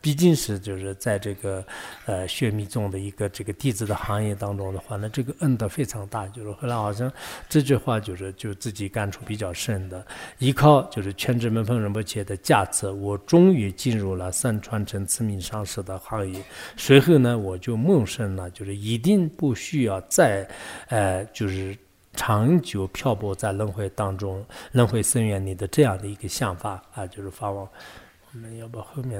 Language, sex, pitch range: English, male, 100-130 Hz